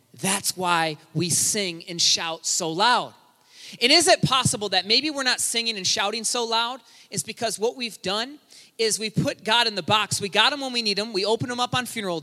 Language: English